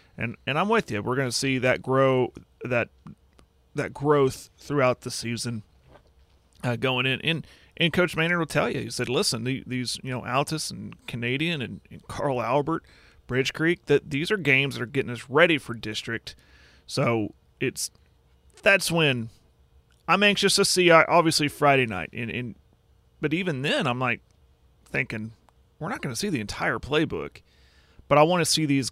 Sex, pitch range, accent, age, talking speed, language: male, 110-140 Hz, American, 30-49, 175 wpm, English